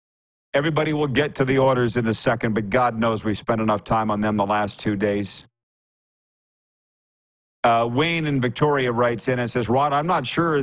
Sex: male